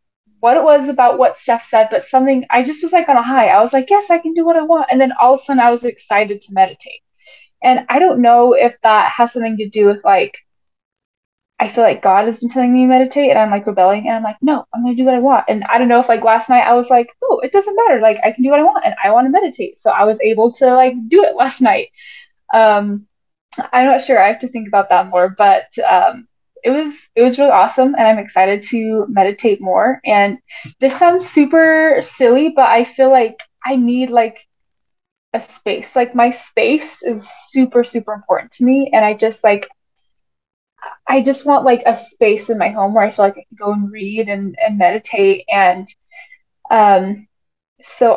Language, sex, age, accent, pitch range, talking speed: English, female, 10-29, American, 215-270 Hz, 235 wpm